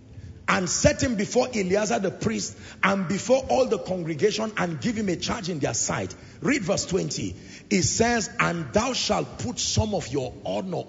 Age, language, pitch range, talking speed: 40-59, English, 165-230 Hz, 180 wpm